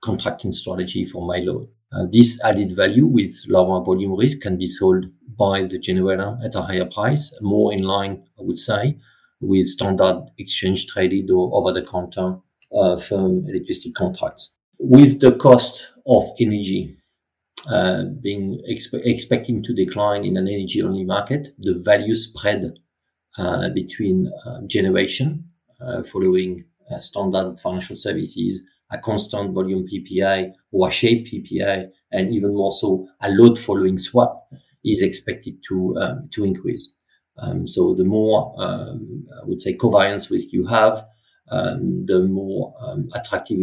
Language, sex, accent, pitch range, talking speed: English, male, French, 95-120 Hz, 145 wpm